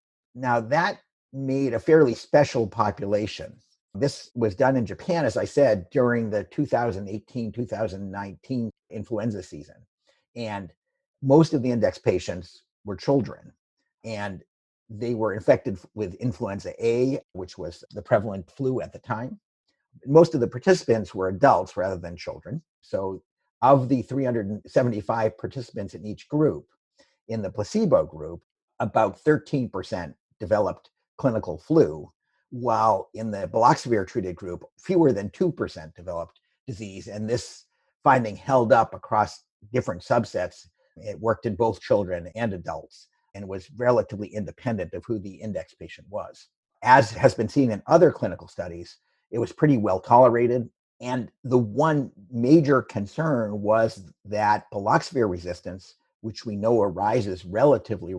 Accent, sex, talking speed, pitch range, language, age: American, male, 135 wpm, 100-125 Hz, English, 50-69